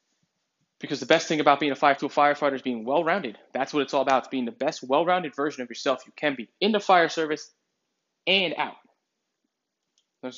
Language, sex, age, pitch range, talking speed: English, male, 20-39, 130-160 Hz, 210 wpm